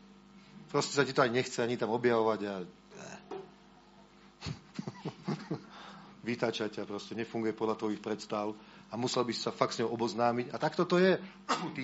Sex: male